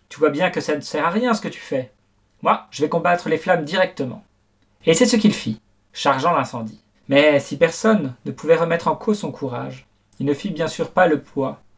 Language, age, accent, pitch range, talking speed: French, 40-59, French, 125-185 Hz, 230 wpm